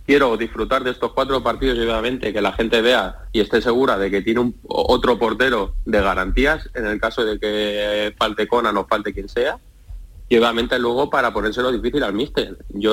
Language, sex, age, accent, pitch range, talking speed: Spanish, male, 30-49, Spanish, 105-135 Hz, 195 wpm